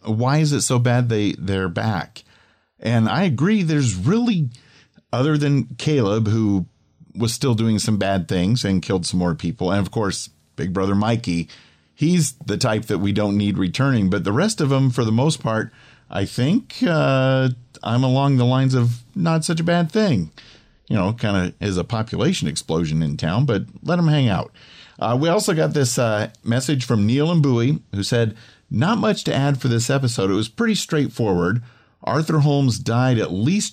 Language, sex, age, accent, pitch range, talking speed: English, male, 50-69, American, 105-140 Hz, 190 wpm